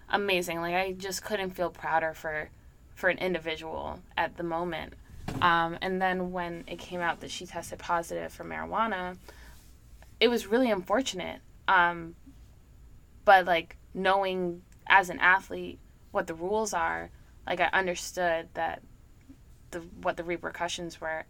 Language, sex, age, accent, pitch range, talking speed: English, female, 20-39, American, 160-180 Hz, 145 wpm